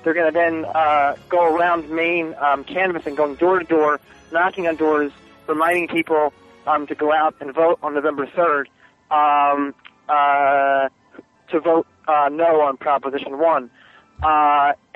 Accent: American